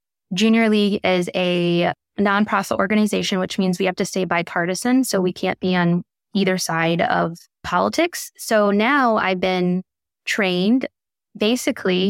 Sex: female